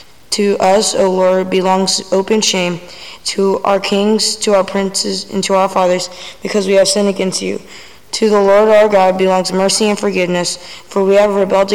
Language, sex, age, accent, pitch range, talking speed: English, female, 20-39, American, 185-205 Hz, 185 wpm